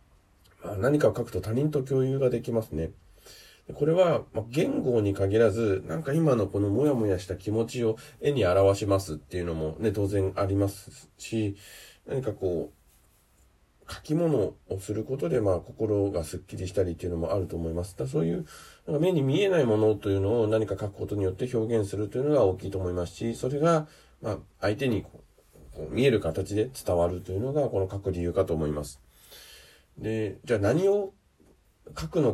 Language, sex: Japanese, male